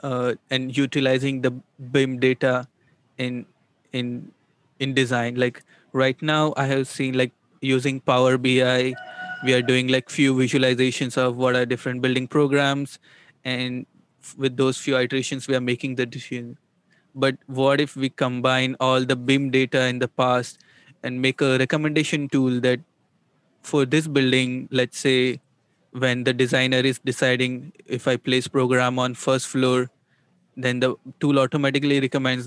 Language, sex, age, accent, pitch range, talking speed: English, male, 20-39, Indian, 125-140 Hz, 150 wpm